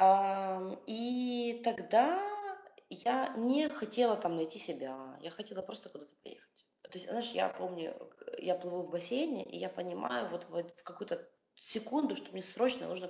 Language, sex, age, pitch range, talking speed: Russian, female, 20-39, 180-275 Hz, 150 wpm